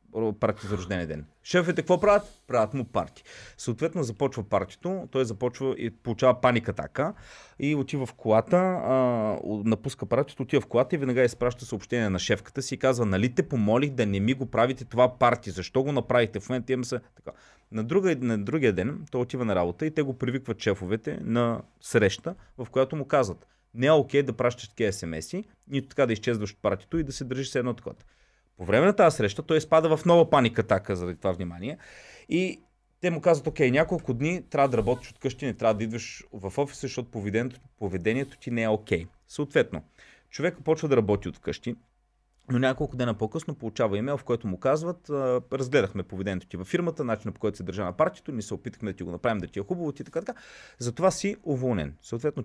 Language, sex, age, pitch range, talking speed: Bulgarian, male, 30-49, 110-140 Hz, 205 wpm